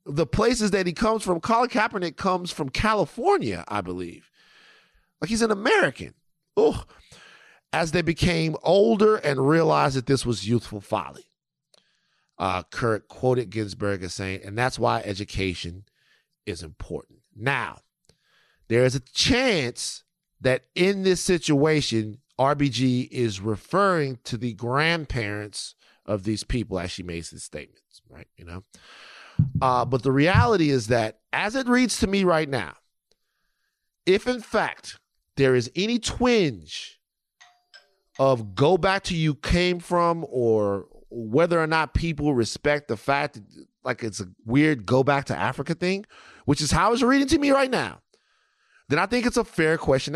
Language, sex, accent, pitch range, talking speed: English, male, American, 115-185 Hz, 150 wpm